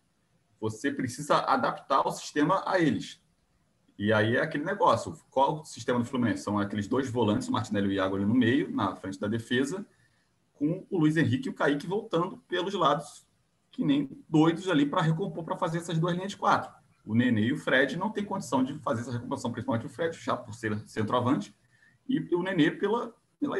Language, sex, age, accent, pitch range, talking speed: Portuguese, male, 30-49, Brazilian, 110-175 Hz, 205 wpm